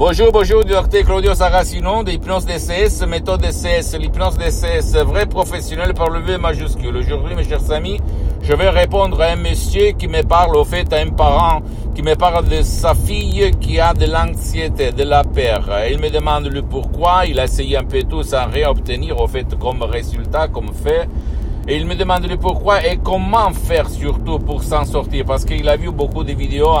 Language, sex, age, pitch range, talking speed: Italian, male, 60-79, 80-120 Hz, 200 wpm